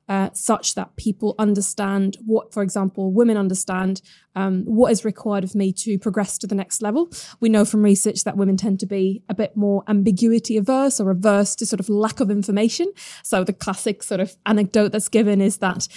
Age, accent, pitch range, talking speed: 20-39, British, 195-215 Hz, 205 wpm